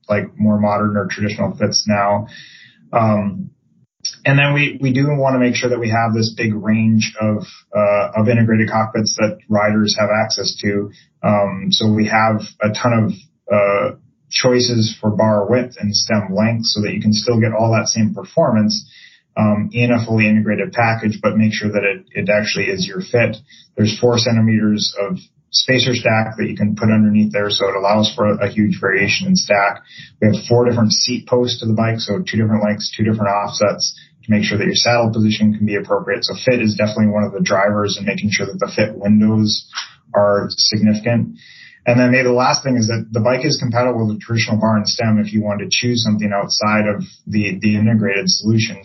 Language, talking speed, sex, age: English, 210 wpm, male, 30-49